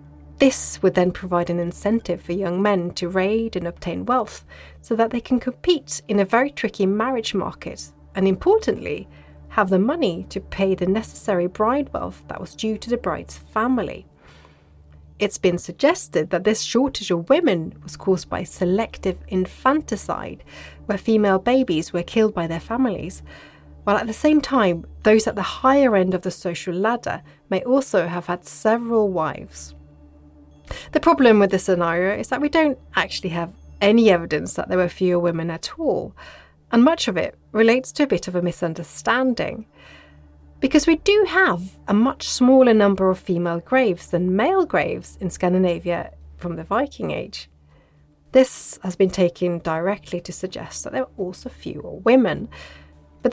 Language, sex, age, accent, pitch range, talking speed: English, female, 30-49, British, 165-230 Hz, 170 wpm